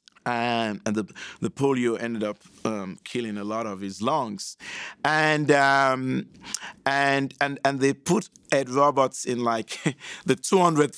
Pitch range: 115-145 Hz